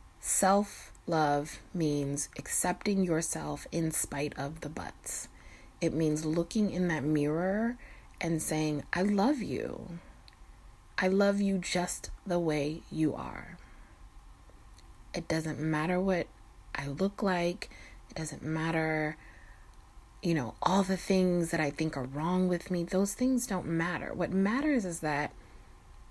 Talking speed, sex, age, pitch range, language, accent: 135 wpm, female, 30-49, 145-190 Hz, English, American